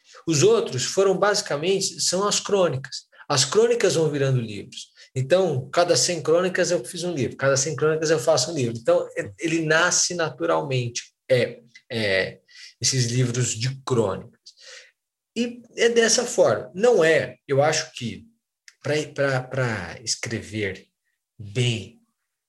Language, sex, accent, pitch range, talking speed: Portuguese, male, Brazilian, 115-150 Hz, 130 wpm